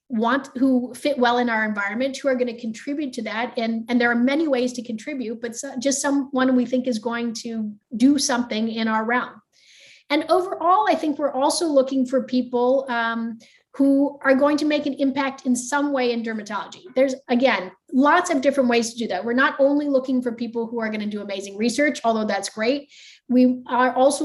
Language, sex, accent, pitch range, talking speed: English, female, American, 230-275 Hz, 210 wpm